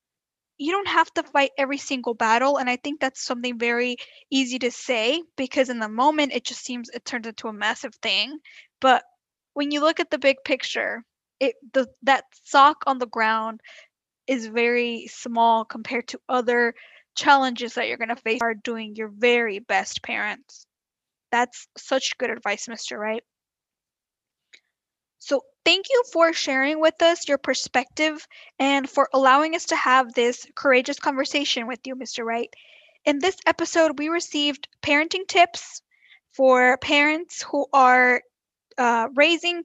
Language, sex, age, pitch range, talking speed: English, female, 10-29, 240-295 Hz, 160 wpm